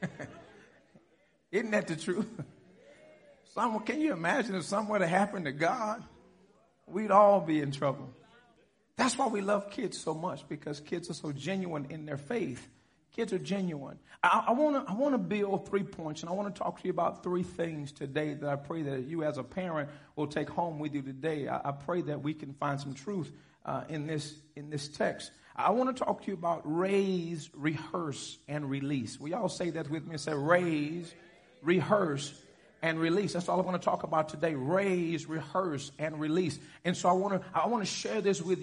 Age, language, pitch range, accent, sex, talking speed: 40-59, English, 150-185 Hz, American, male, 205 wpm